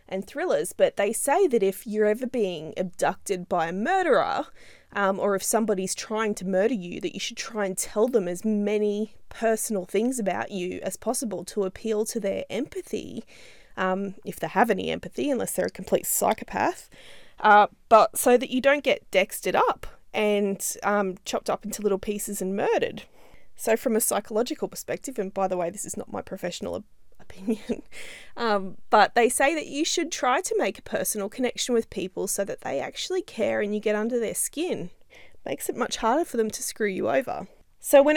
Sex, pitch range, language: female, 190-240 Hz, English